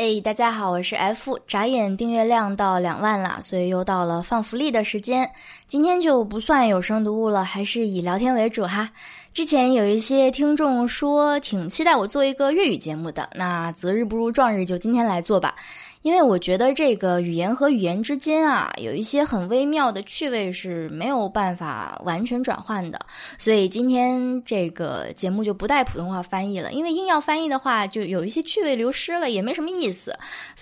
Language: Chinese